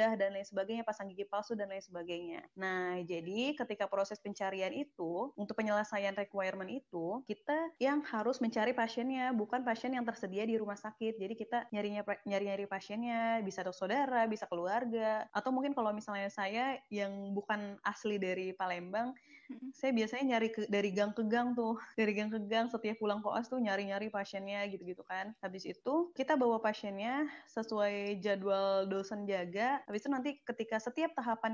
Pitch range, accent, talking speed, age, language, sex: 200-240 Hz, native, 165 wpm, 20-39, Indonesian, female